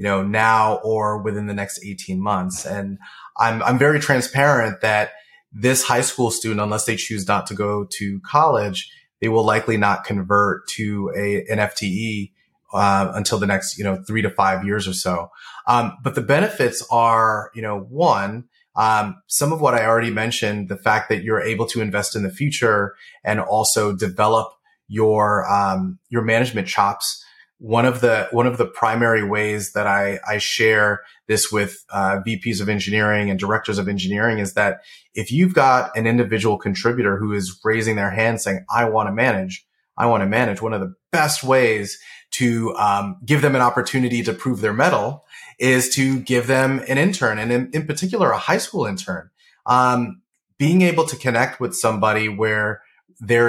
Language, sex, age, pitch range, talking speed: English, male, 30-49, 100-120 Hz, 185 wpm